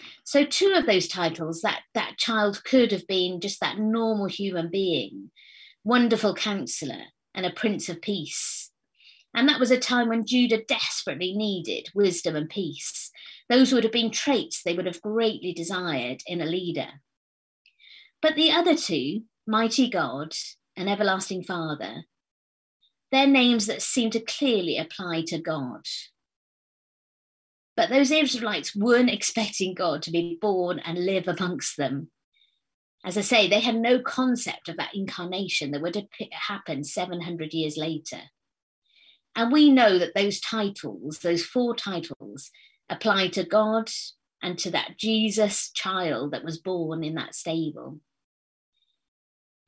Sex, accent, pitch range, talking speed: female, British, 170-225 Hz, 145 wpm